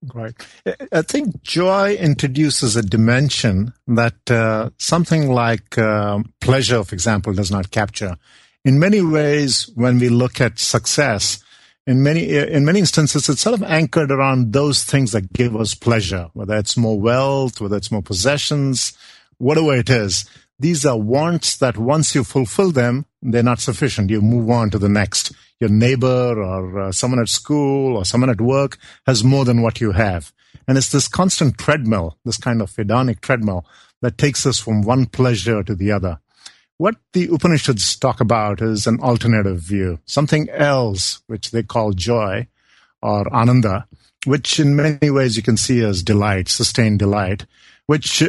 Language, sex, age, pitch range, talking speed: English, male, 50-69, 110-140 Hz, 165 wpm